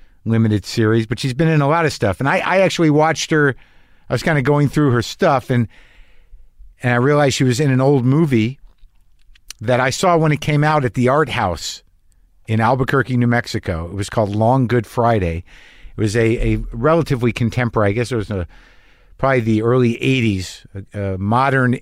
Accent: American